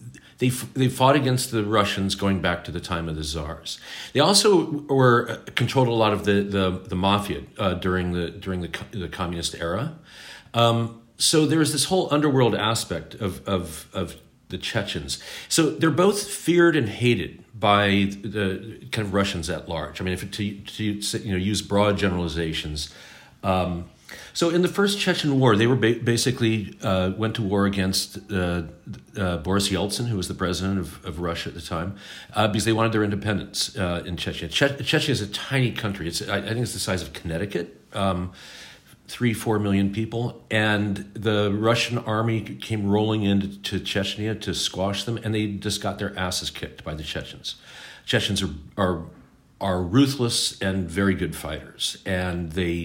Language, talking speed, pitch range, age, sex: English, 185 wpm, 90-115 Hz, 40-59, male